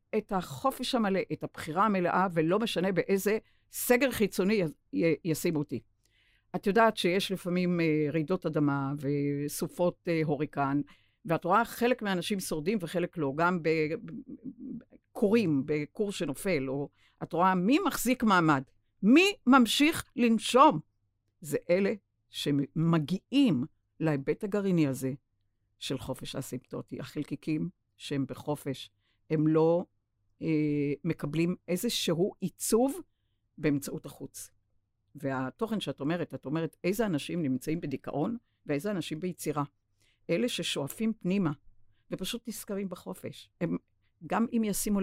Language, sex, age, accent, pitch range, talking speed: Hebrew, female, 50-69, native, 140-200 Hz, 110 wpm